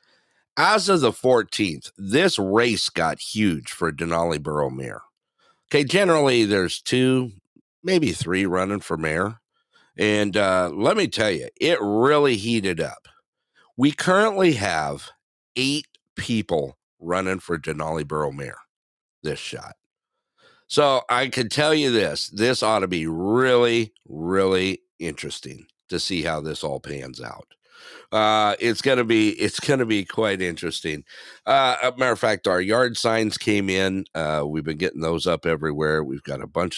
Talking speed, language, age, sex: 155 wpm, English, 50-69, male